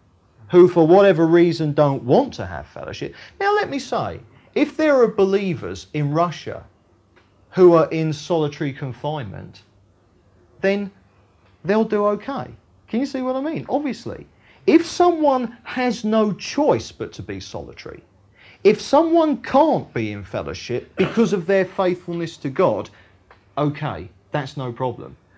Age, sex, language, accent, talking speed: 30-49, male, English, British, 140 wpm